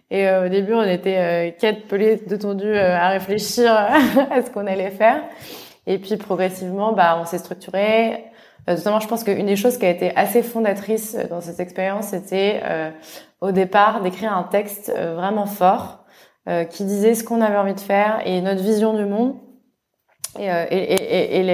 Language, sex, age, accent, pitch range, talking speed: French, female, 20-39, French, 180-215 Hz, 180 wpm